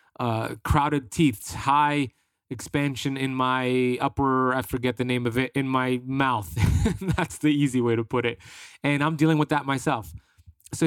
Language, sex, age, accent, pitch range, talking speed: English, male, 30-49, American, 115-145 Hz, 170 wpm